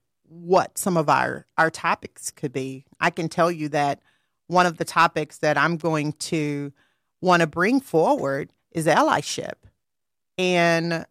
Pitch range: 145-175 Hz